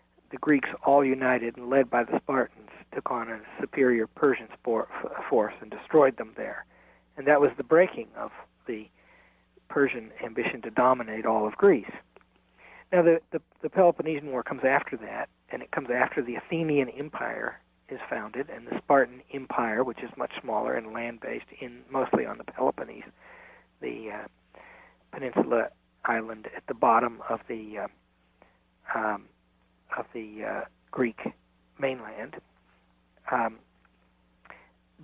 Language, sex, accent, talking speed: English, male, American, 145 wpm